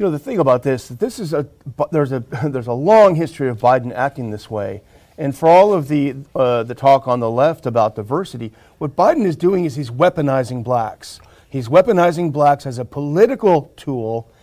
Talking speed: 195 wpm